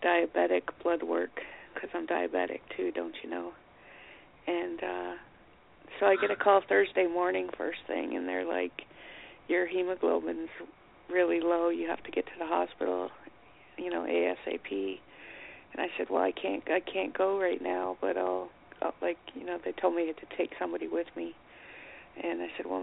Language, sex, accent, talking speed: English, female, American, 175 wpm